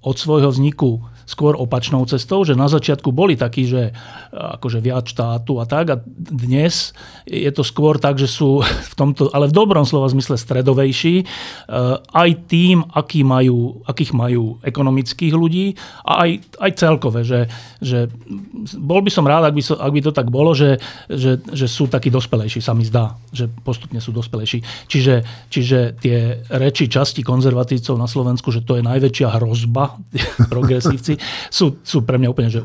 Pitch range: 120-140 Hz